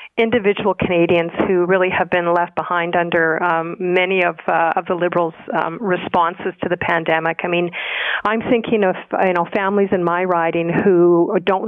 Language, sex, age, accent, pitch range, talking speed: English, female, 40-59, American, 170-195 Hz, 175 wpm